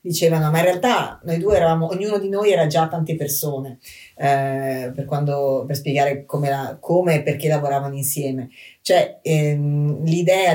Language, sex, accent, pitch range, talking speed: Italian, female, native, 145-170 Hz, 165 wpm